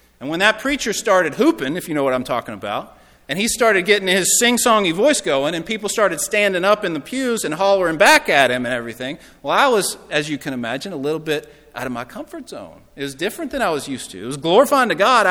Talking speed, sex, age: 250 wpm, male, 40-59